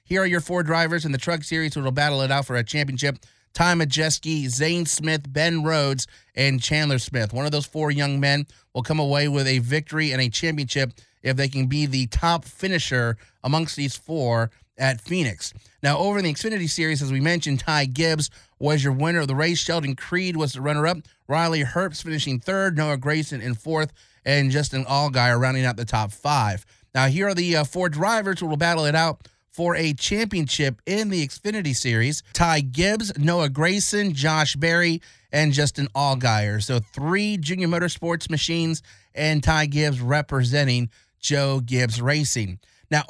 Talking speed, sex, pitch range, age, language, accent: 185 wpm, male, 135-175 Hz, 30-49, English, American